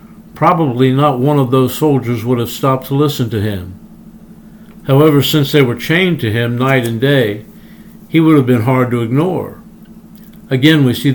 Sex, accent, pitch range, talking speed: male, American, 130-190 Hz, 180 wpm